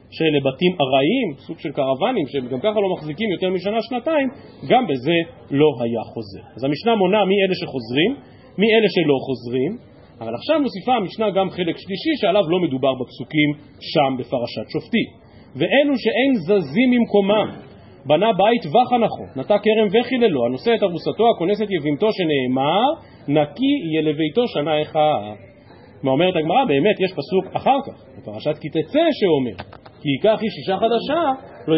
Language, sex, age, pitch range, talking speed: Hebrew, male, 40-59, 140-220 Hz, 150 wpm